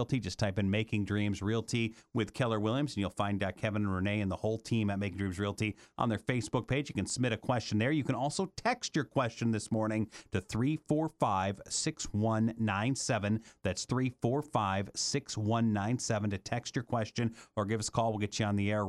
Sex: male